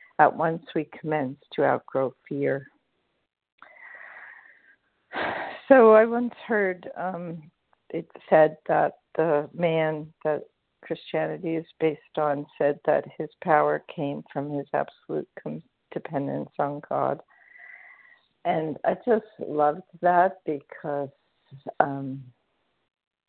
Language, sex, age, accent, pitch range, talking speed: English, female, 50-69, American, 140-160 Hz, 105 wpm